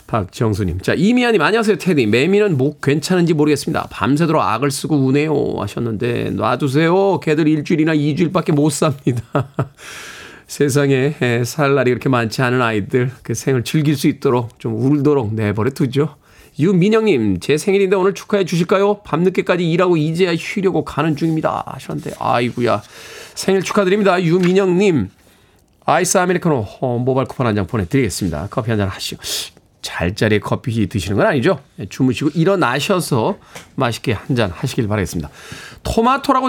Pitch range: 125-180 Hz